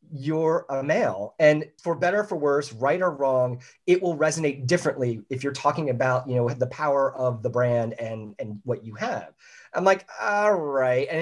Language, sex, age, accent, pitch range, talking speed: English, male, 30-49, American, 125-180 Hz, 200 wpm